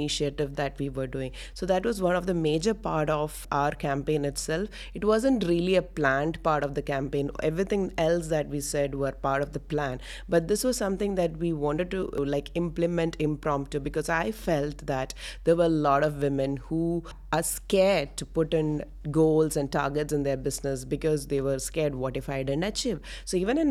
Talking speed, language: 205 wpm, English